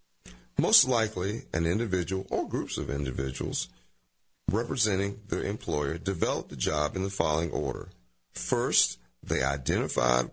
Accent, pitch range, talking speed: American, 70-100 Hz, 120 wpm